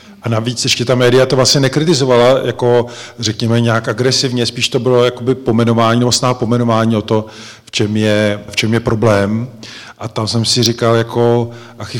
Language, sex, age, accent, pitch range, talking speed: Czech, male, 40-59, native, 110-125 Hz, 170 wpm